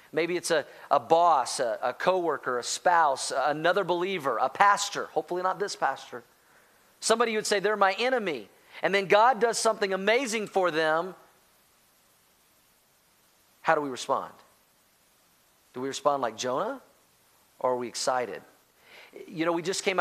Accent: American